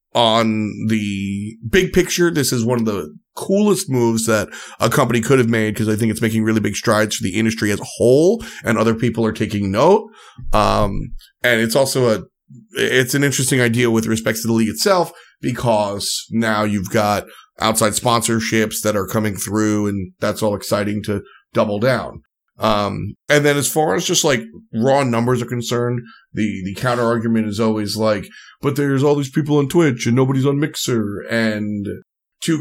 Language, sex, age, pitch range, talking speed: English, male, 30-49, 110-130 Hz, 185 wpm